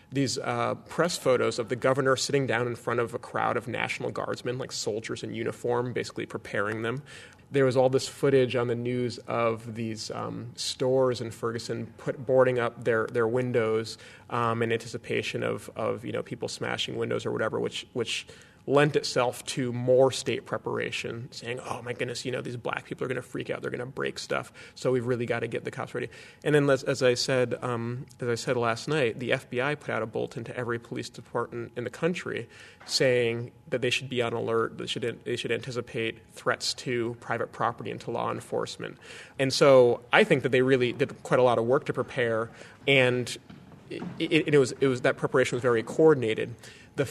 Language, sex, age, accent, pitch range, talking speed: English, male, 30-49, American, 115-135 Hz, 210 wpm